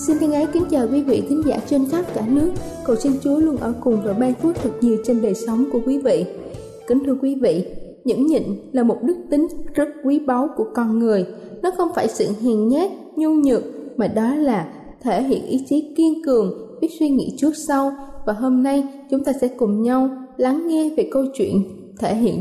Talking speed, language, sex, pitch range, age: 215 wpm, Vietnamese, female, 230-295 Hz, 20-39